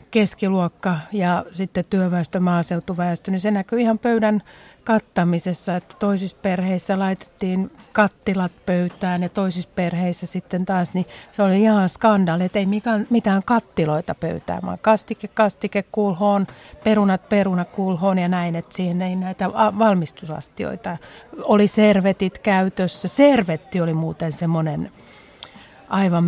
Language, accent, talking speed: Finnish, native, 125 wpm